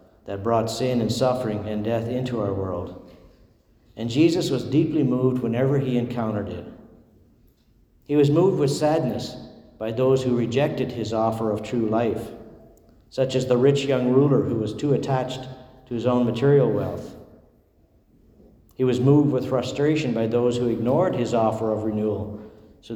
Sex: male